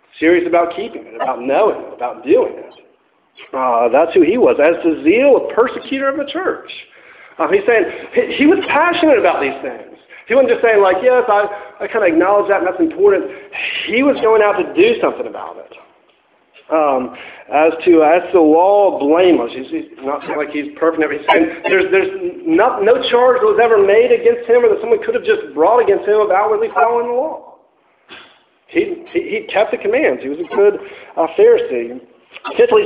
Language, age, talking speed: English, 50-69, 205 wpm